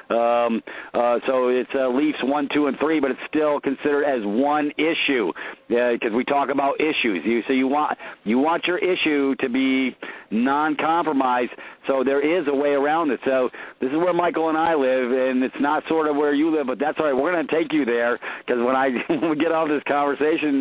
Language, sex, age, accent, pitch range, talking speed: English, male, 50-69, American, 130-150 Hz, 220 wpm